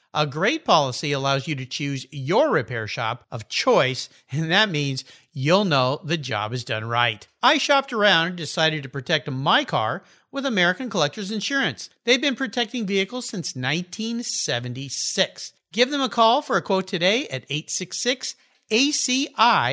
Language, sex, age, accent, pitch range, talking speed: English, male, 50-69, American, 145-240 Hz, 155 wpm